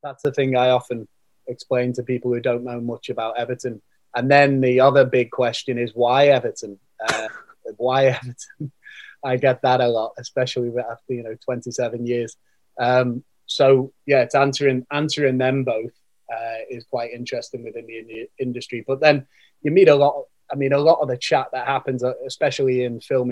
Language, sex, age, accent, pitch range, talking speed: English, male, 20-39, British, 115-135 Hz, 185 wpm